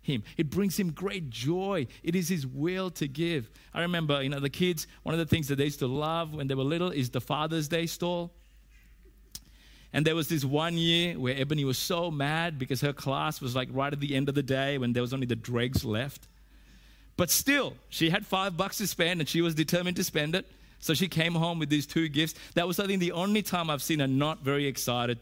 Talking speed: 245 wpm